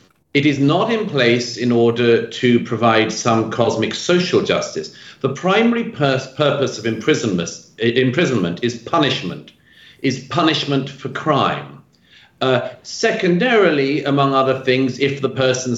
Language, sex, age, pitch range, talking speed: English, male, 50-69, 115-160 Hz, 125 wpm